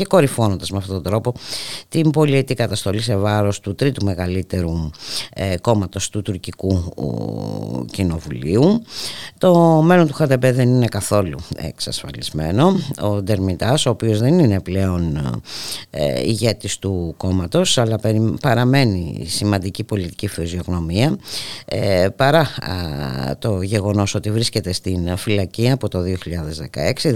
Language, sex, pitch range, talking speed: Greek, female, 95-125 Hz, 115 wpm